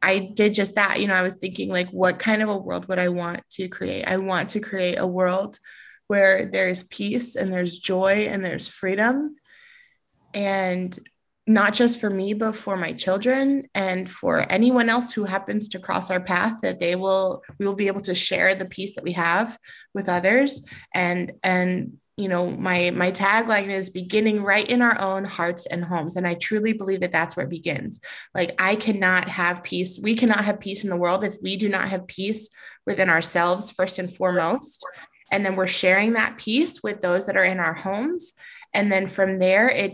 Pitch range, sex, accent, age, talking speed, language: 180-210 Hz, female, American, 20-39, 205 wpm, English